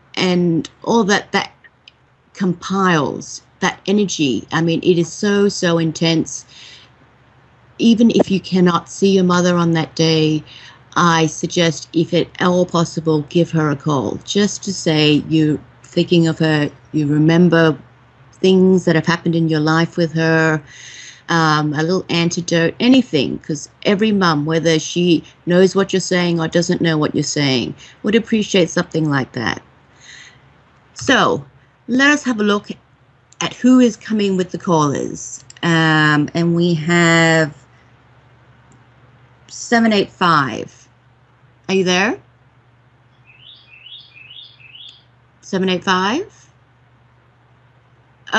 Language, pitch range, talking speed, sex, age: English, 130-185 Hz, 125 wpm, female, 30-49